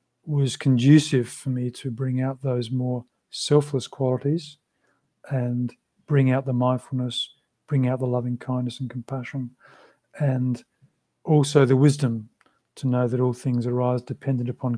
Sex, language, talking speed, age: male, English, 140 wpm, 40-59